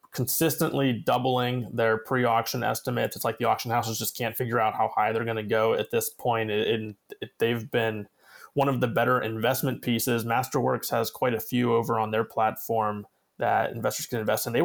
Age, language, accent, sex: 20-39, English, American, male